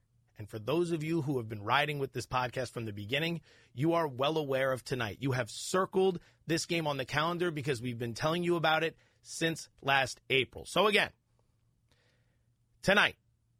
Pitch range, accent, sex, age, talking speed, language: 120-170 Hz, American, male, 30-49, 185 wpm, English